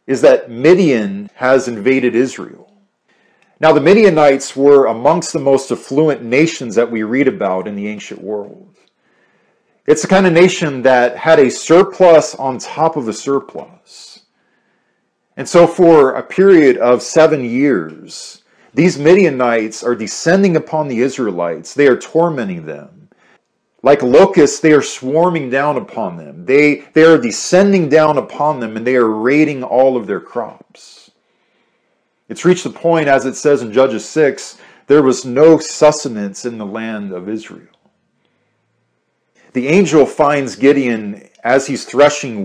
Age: 40-59